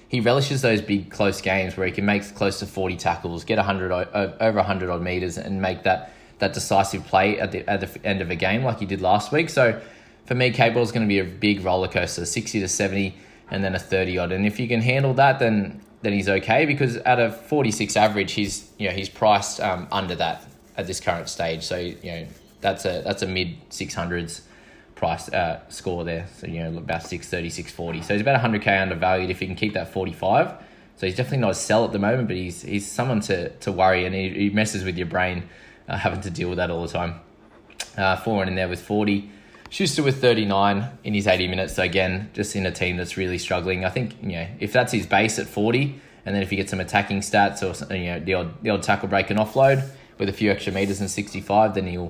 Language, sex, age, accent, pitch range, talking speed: English, male, 20-39, Australian, 90-105 Hz, 240 wpm